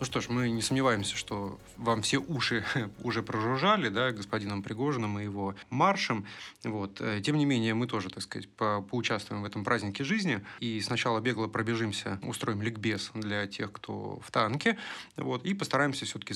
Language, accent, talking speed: Russian, native, 160 wpm